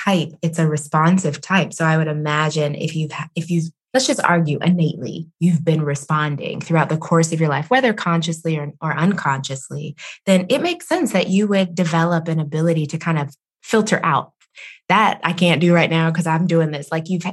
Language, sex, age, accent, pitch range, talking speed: English, female, 20-39, American, 155-200 Hz, 200 wpm